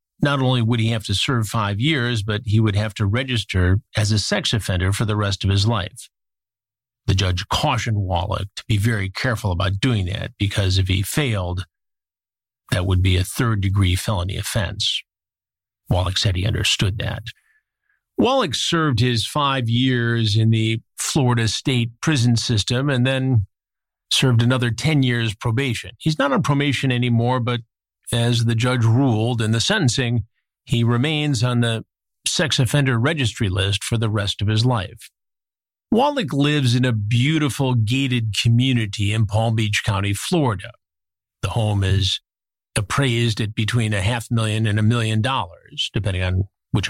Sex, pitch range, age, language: male, 100-125 Hz, 50-69, English